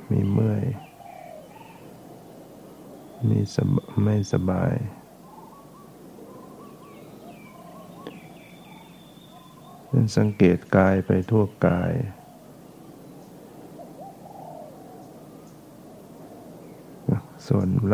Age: 60-79